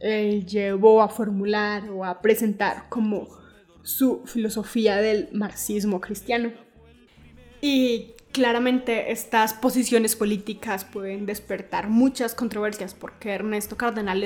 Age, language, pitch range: 20-39, Spanish, 210-245 Hz